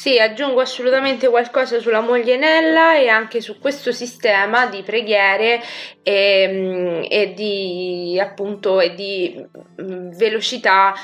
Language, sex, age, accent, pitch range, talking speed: Italian, female, 20-39, native, 180-215 Hz, 115 wpm